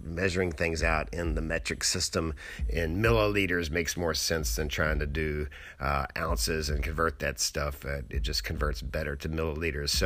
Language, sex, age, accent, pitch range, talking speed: English, male, 50-69, American, 80-100 Hz, 180 wpm